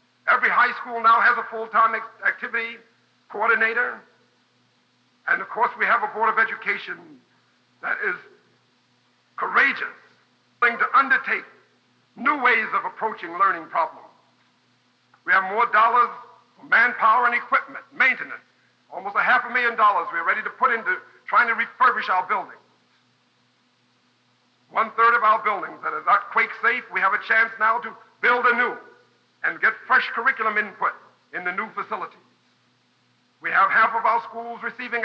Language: English